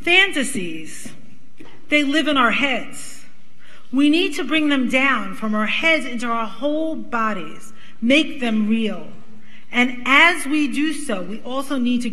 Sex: female